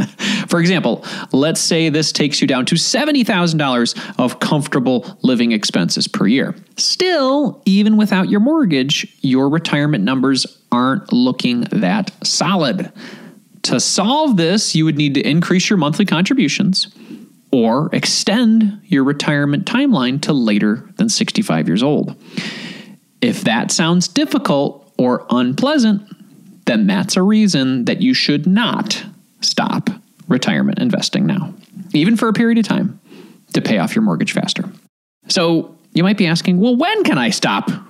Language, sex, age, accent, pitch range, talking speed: English, male, 30-49, American, 170-220 Hz, 140 wpm